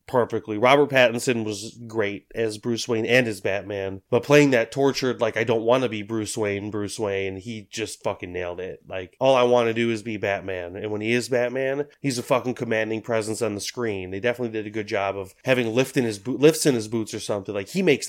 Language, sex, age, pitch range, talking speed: English, male, 30-49, 105-125 Hz, 240 wpm